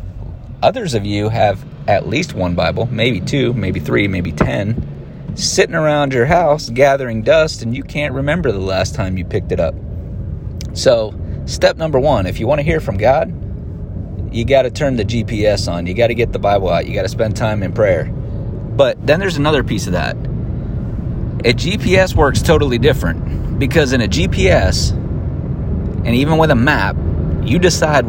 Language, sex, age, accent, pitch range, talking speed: English, male, 30-49, American, 95-120 Hz, 185 wpm